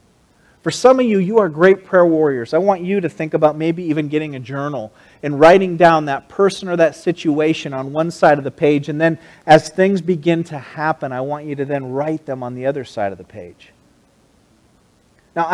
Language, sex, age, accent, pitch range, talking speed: English, male, 40-59, American, 130-160 Hz, 215 wpm